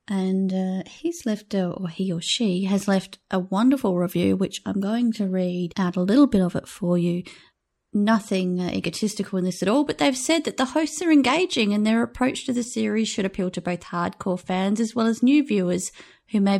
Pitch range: 190-235 Hz